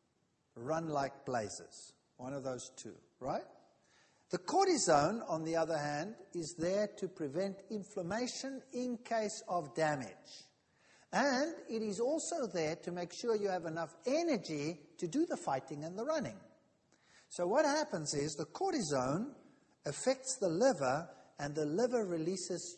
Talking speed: 145 wpm